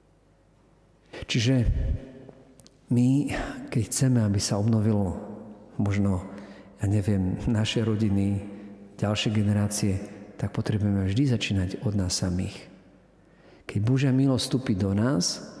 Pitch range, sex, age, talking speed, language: 100-120 Hz, male, 50-69, 105 wpm, Slovak